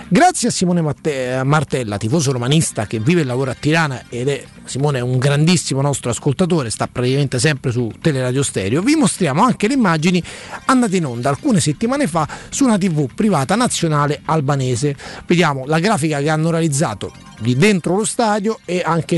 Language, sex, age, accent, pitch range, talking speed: Italian, male, 30-49, native, 145-190 Hz, 170 wpm